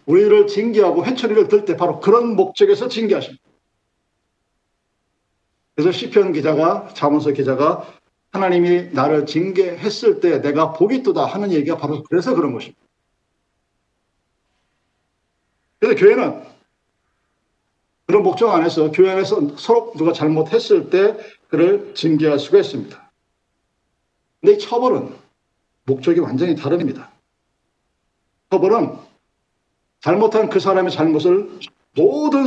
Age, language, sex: 50-69, Korean, male